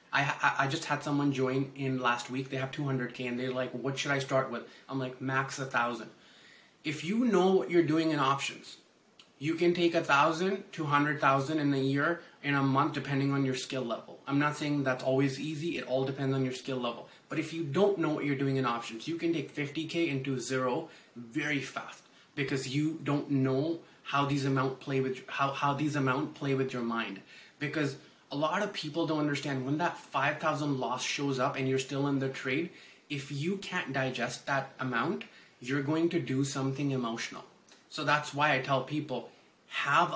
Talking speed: 210 wpm